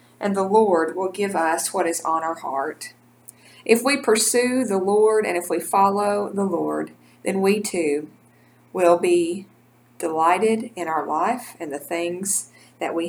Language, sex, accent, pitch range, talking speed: English, female, American, 165-205 Hz, 165 wpm